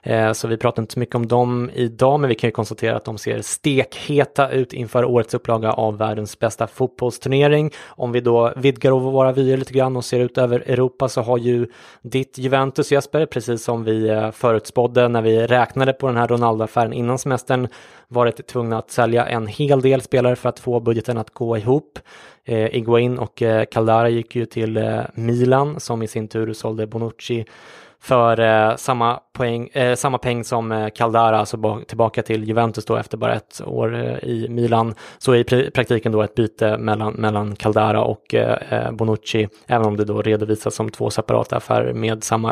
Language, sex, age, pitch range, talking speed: English, male, 20-39, 110-125 Hz, 190 wpm